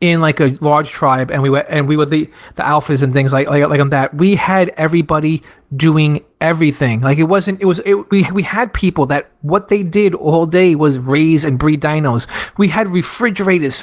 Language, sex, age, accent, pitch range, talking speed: English, male, 30-49, American, 150-185 Hz, 215 wpm